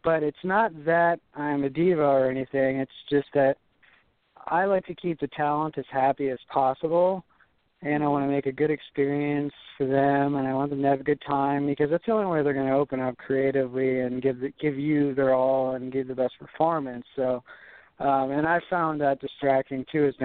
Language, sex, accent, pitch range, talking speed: English, male, American, 130-150 Hz, 215 wpm